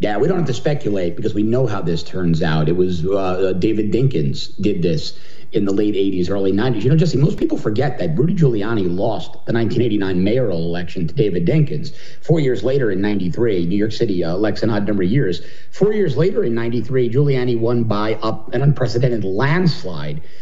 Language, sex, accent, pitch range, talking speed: English, male, American, 100-145 Hz, 205 wpm